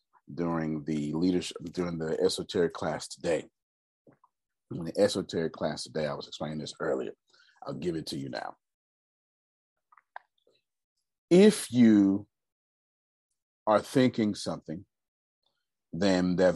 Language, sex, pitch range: English, male, 80-105 Hz